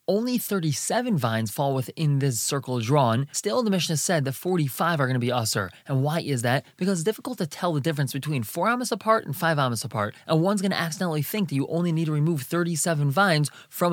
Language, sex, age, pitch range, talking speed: English, male, 20-39, 140-180 Hz, 235 wpm